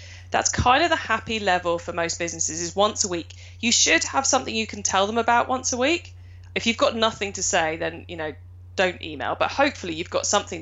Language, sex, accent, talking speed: English, female, British, 230 wpm